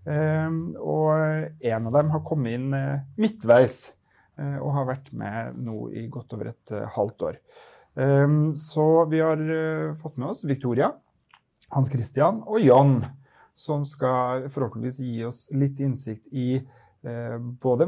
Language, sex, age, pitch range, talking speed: English, male, 30-49, 120-145 Hz, 150 wpm